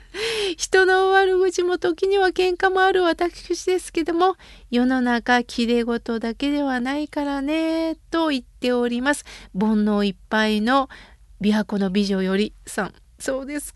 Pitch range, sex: 250-360 Hz, female